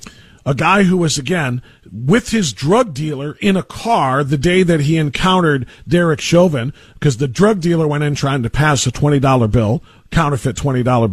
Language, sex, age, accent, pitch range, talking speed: English, male, 50-69, American, 140-210 Hz, 180 wpm